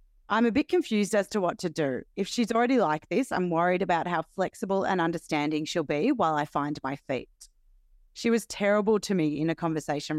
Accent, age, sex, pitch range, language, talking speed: Australian, 40-59, female, 155-205 Hz, English, 210 wpm